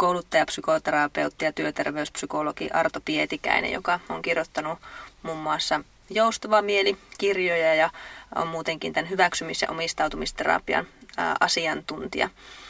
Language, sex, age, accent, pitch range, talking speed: Finnish, female, 20-39, native, 165-195 Hz, 105 wpm